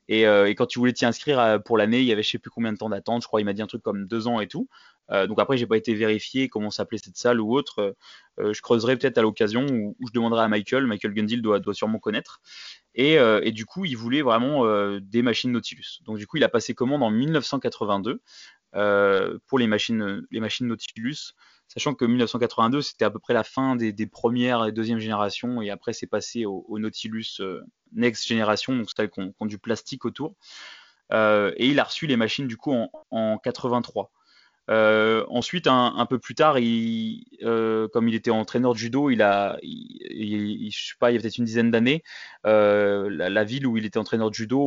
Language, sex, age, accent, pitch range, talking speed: French, male, 20-39, French, 105-120 Hz, 235 wpm